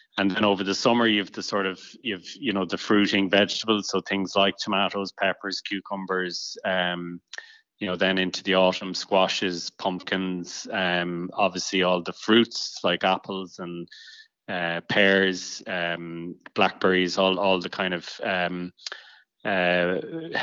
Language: English